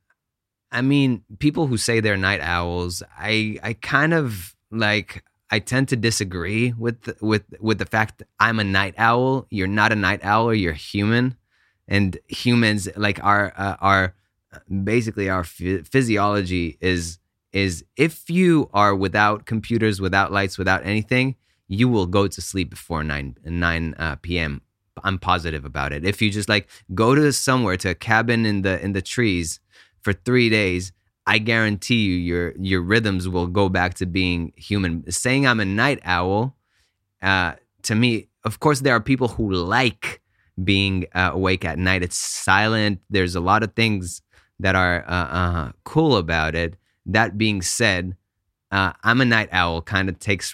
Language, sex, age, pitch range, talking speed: English, male, 20-39, 90-110 Hz, 170 wpm